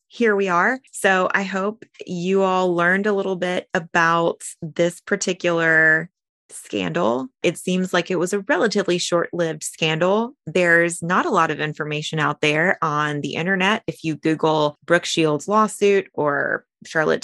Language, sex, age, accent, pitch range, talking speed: English, female, 20-39, American, 160-200 Hz, 155 wpm